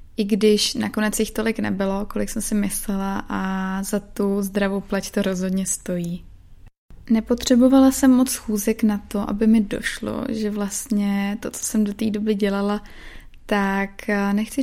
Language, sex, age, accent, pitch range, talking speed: Czech, female, 20-39, native, 200-220 Hz, 155 wpm